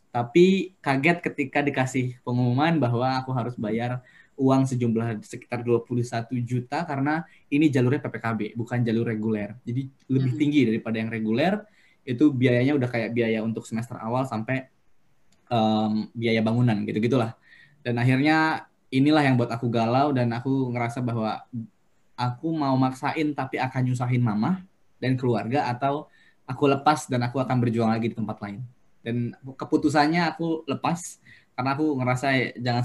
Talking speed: 145 wpm